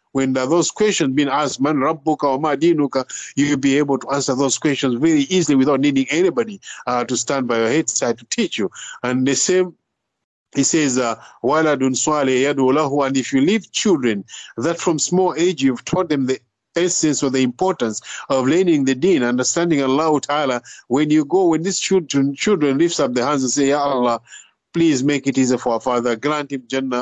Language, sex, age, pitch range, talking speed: English, male, 50-69, 130-160 Hz, 190 wpm